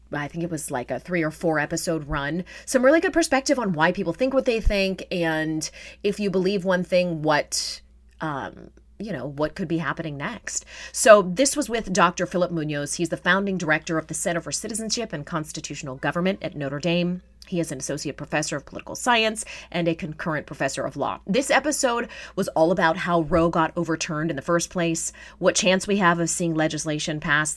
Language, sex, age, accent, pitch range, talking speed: English, female, 30-49, American, 155-190 Hz, 205 wpm